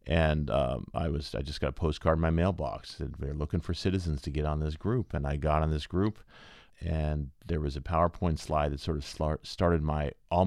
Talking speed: 230 wpm